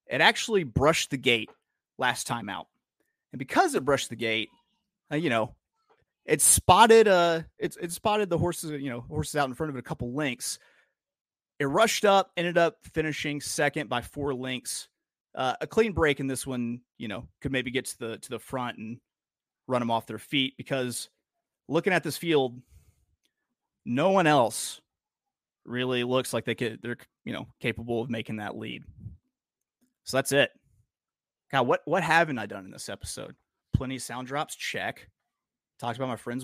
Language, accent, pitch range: English, American, 120-160 Hz